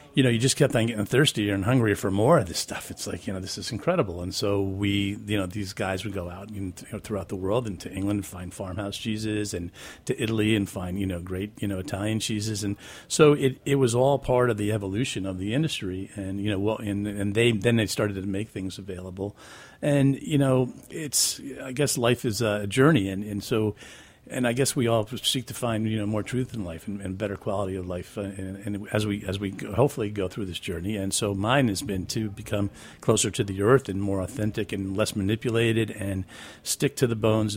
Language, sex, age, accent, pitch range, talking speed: English, male, 40-59, American, 95-115 Hz, 240 wpm